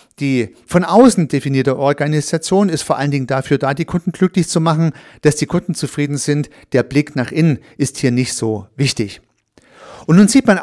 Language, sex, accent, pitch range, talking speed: German, male, German, 130-175 Hz, 190 wpm